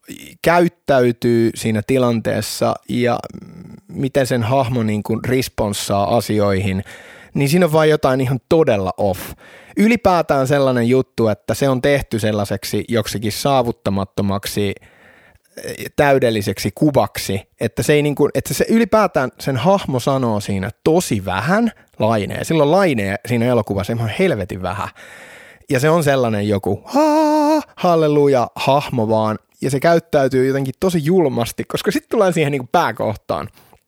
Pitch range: 115-180 Hz